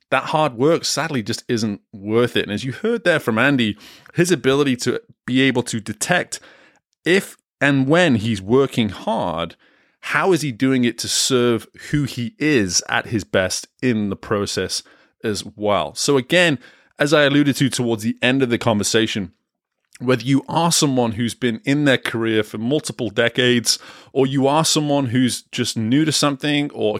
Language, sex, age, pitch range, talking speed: English, male, 30-49, 105-140 Hz, 180 wpm